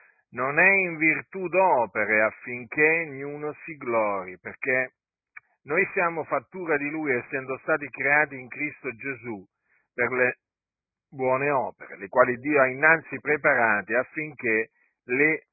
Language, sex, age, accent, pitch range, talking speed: Italian, male, 50-69, native, 125-165 Hz, 130 wpm